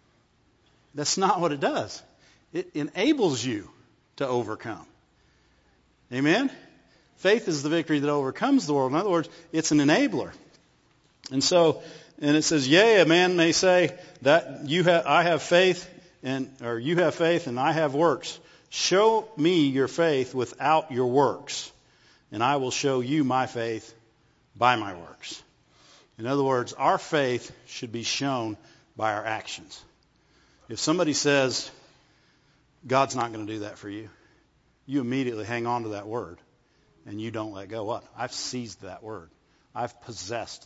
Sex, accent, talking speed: male, American, 160 wpm